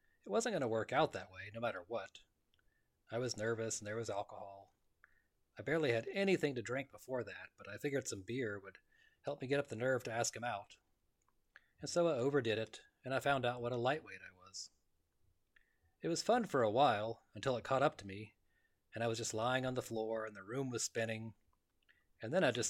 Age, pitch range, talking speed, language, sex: 30-49, 100-130 Hz, 225 wpm, English, male